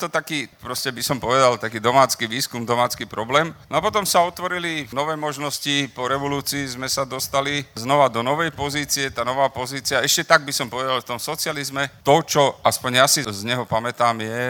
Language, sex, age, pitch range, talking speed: Slovak, male, 40-59, 115-135 Hz, 195 wpm